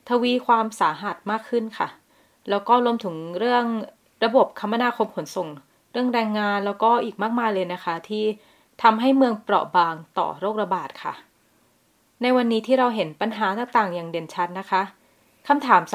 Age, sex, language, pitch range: 20-39, female, Thai, 180-240 Hz